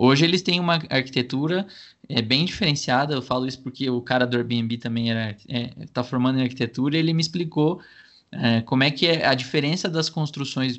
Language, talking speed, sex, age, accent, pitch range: Portuguese, 195 wpm, male, 20-39, Brazilian, 125-160 Hz